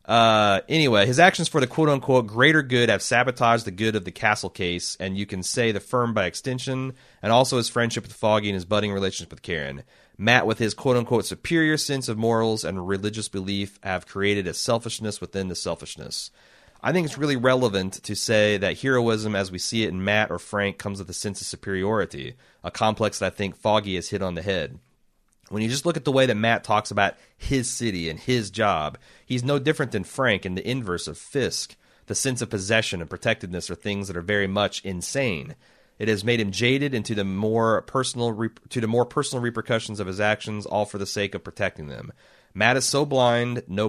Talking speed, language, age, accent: 215 wpm, English, 30-49, American